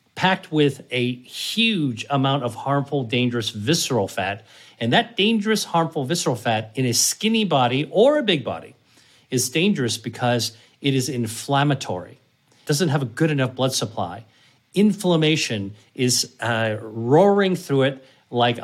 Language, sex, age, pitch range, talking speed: English, male, 40-59, 120-155 Hz, 140 wpm